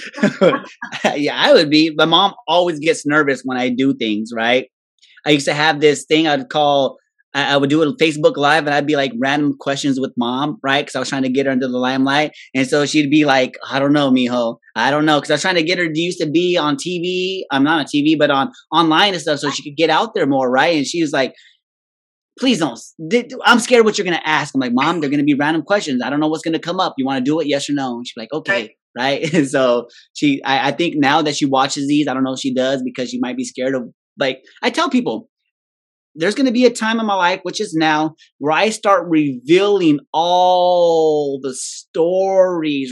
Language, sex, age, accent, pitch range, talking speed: English, male, 20-39, American, 140-180 Hz, 250 wpm